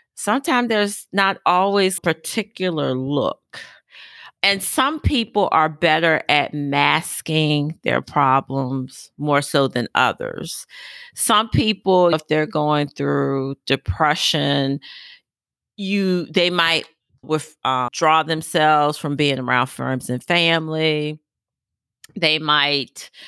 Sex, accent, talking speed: female, American, 100 wpm